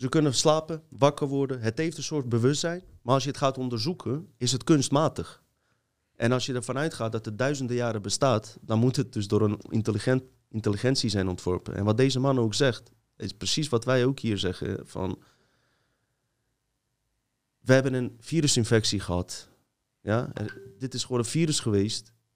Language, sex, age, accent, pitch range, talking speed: Dutch, male, 30-49, Dutch, 100-130 Hz, 175 wpm